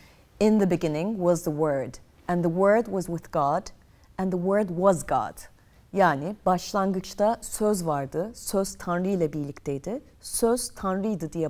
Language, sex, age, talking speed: Turkish, female, 40-59, 145 wpm